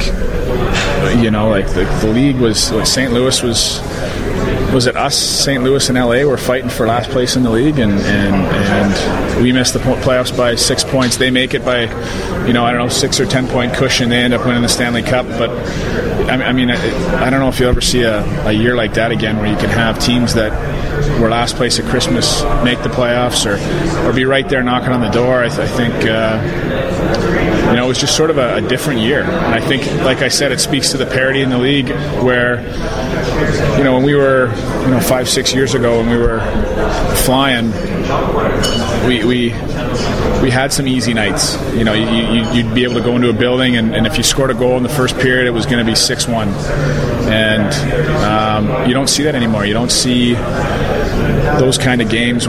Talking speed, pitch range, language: 220 wpm, 115-130 Hz, English